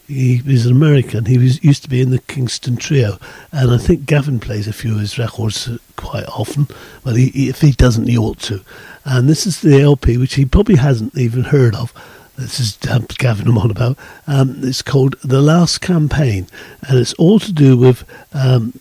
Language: English